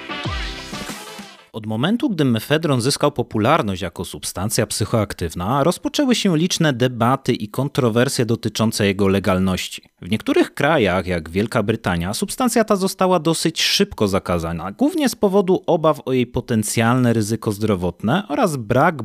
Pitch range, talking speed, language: 105-155 Hz, 130 wpm, Polish